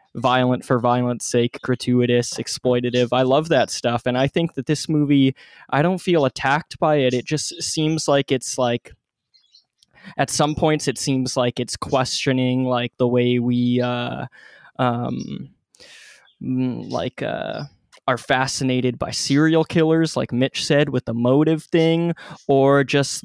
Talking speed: 150 wpm